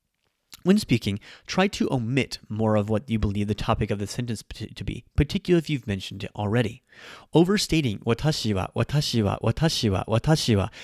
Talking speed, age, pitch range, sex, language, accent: 155 wpm, 30-49, 105-135 Hz, male, English, American